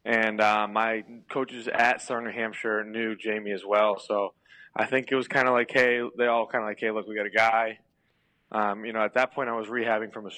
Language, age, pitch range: English, 20-39, 105-125 Hz